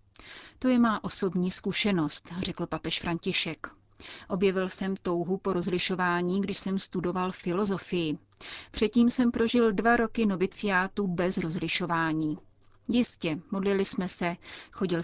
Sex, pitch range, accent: female, 170-200 Hz, native